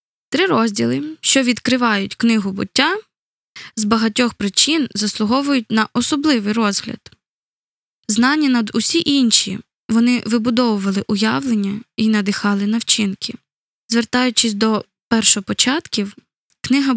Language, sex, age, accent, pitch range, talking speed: Ukrainian, female, 20-39, native, 210-265 Hz, 95 wpm